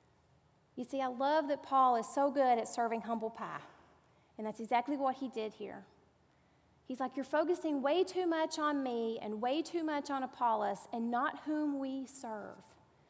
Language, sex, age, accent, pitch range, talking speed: English, female, 30-49, American, 230-300 Hz, 185 wpm